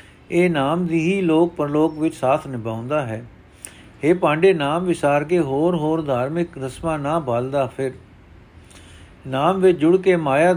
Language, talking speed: Punjabi, 155 wpm